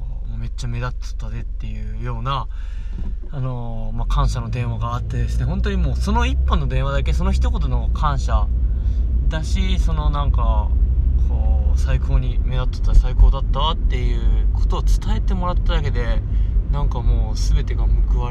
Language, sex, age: Japanese, male, 20-39